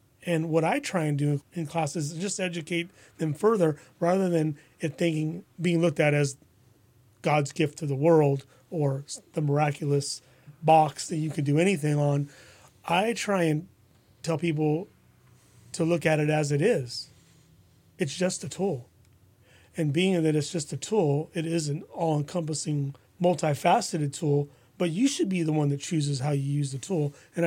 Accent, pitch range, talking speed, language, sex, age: American, 145-175 Hz, 175 wpm, English, male, 30-49